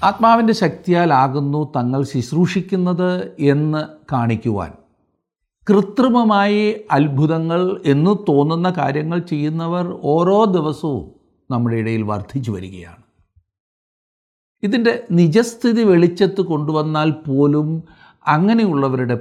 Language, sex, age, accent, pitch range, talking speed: Malayalam, male, 60-79, native, 115-175 Hz, 80 wpm